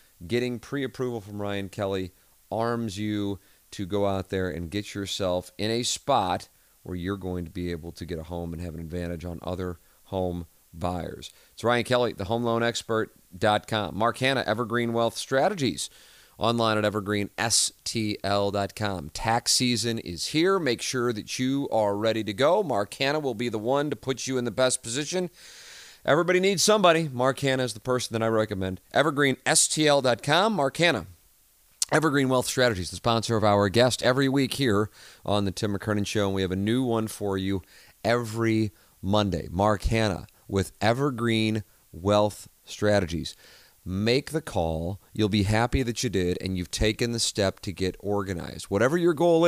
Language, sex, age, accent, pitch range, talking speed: English, male, 30-49, American, 95-125 Hz, 170 wpm